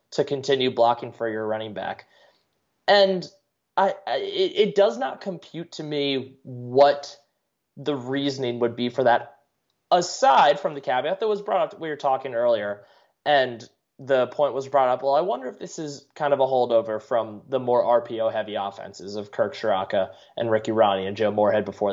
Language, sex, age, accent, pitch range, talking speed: English, male, 20-39, American, 115-170 Hz, 185 wpm